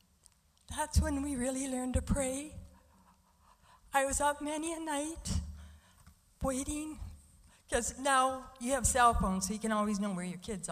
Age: 60-79